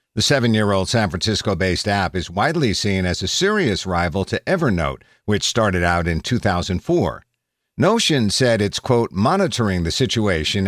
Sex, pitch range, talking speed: male, 95-120 Hz, 145 wpm